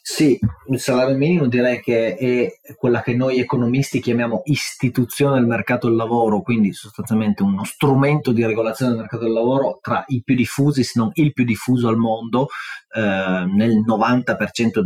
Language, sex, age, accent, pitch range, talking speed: Italian, male, 30-49, native, 110-130 Hz, 165 wpm